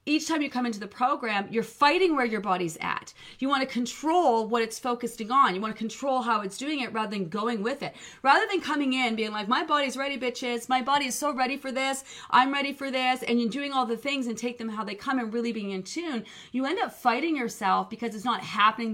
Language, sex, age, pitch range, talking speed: English, female, 30-49, 210-265 Hz, 255 wpm